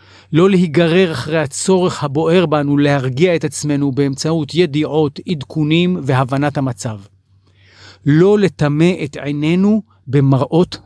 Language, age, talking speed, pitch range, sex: English, 40-59, 105 wpm, 110-165 Hz, male